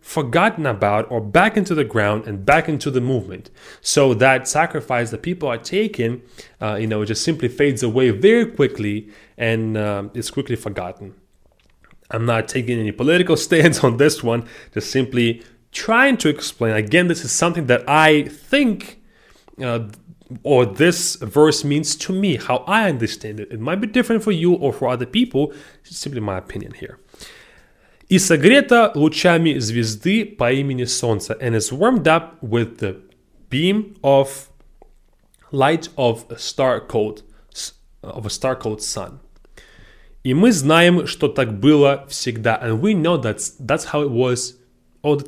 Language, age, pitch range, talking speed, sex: English, 30-49, 115-165 Hz, 165 wpm, male